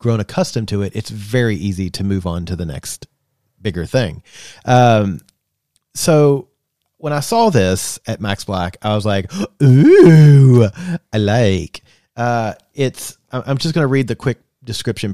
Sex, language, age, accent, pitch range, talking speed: male, English, 40-59, American, 100-140 Hz, 160 wpm